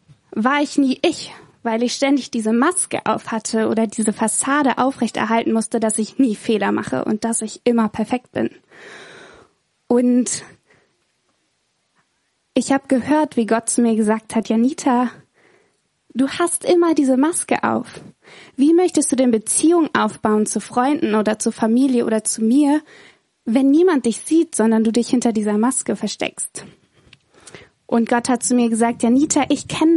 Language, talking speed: German, 155 wpm